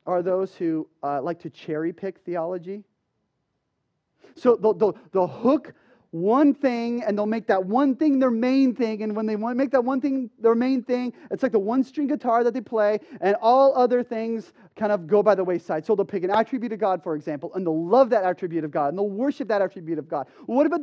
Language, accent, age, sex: English, American, 30-49, male